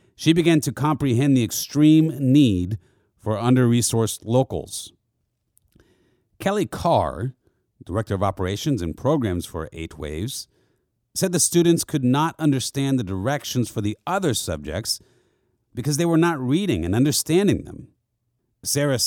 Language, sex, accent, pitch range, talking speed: English, male, American, 110-155 Hz, 130 wpm